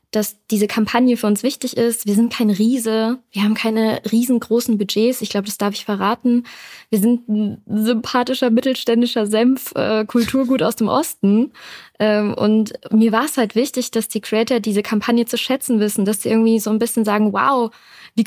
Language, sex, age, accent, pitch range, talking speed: German, female, 20-39, German, 210-235 Hz, 175 wpm